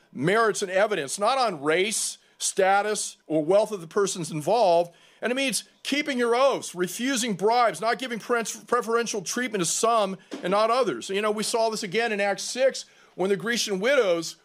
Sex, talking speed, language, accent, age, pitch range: male, 180 wpm, English, American, 40-59, 170-225 Hz